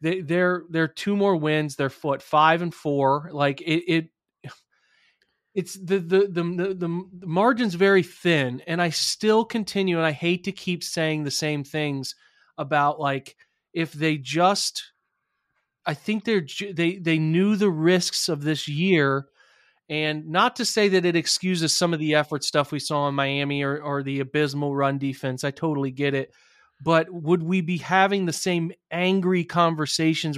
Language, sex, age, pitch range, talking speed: English, male, 30-49, 140-180 Hz, 170 wpm